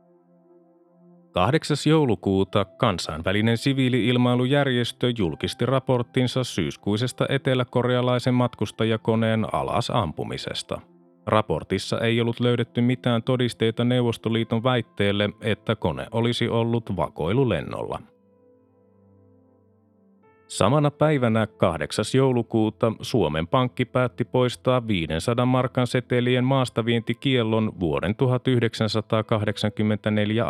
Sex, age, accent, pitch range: male, 30-49, native, 105-125 Hz